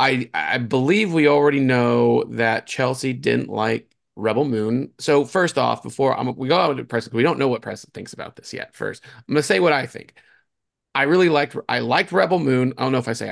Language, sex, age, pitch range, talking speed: English, male, 30-49, 115-145 Hz, 235 wpm